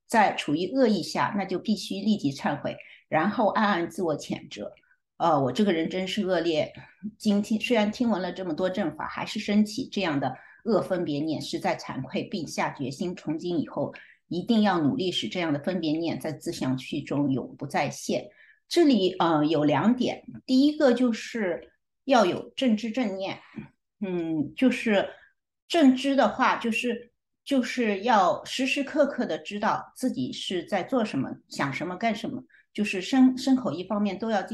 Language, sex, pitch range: English, female, 180-250 Hz